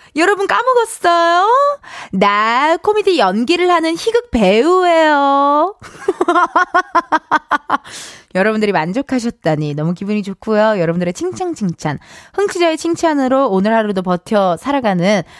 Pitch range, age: 190-310 Hz, 20-39